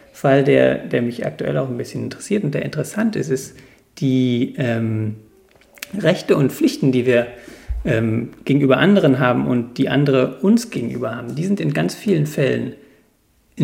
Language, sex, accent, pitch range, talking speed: German, male, German, 120-155 Hz, 165 wpm